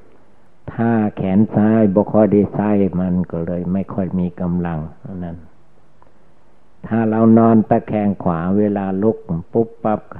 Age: 60-79